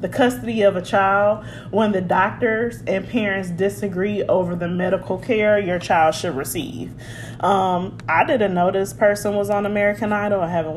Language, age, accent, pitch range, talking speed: English, 20-39, American, 180-215 Hz, 175 wpm